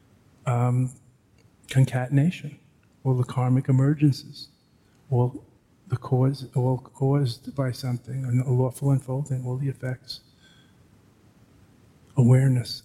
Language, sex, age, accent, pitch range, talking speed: English, male, 50-69, American, 120-135 Hz, 95 wpm